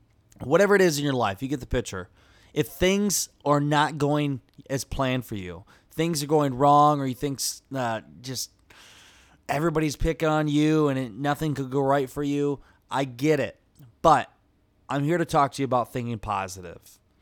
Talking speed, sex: 180 wpm, male